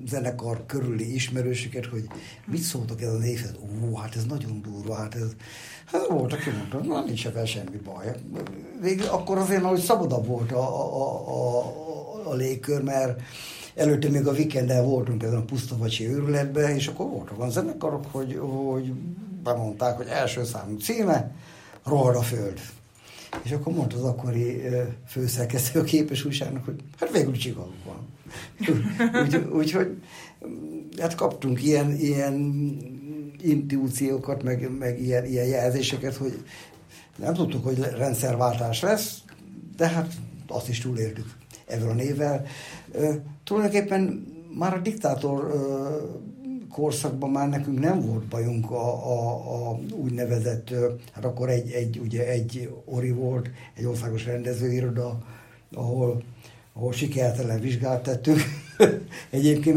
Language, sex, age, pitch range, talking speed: Hungarian, male, 60-79, 120-150 Hz, 130 wpm